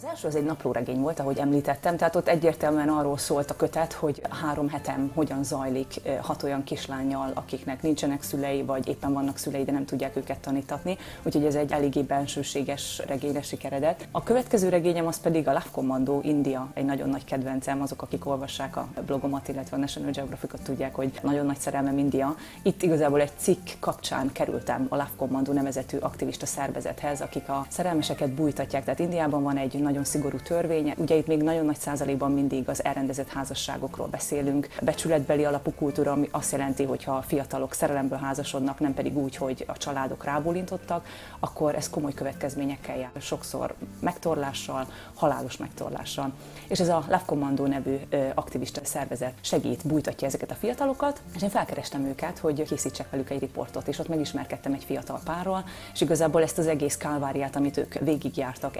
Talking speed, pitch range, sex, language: 170 wpm, 135-155 Hz, female, Hungarian